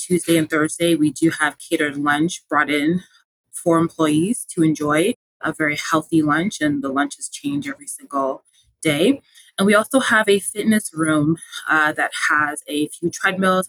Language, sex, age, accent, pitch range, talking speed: English, female, 20-39, American, 155-195 Hz, 165 wpm